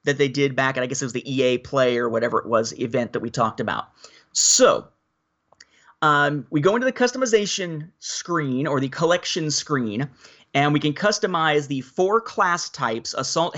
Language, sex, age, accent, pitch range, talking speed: English, male, 30-49, American, 135-175 Hz, 185 wpm